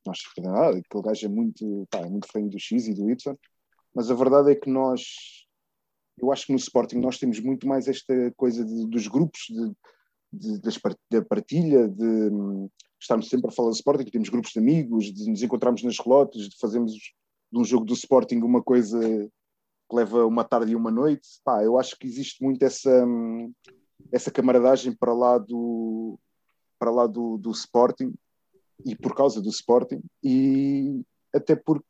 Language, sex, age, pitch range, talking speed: Portuguese, male, 20-39, 115-145 Hz, 180 wpm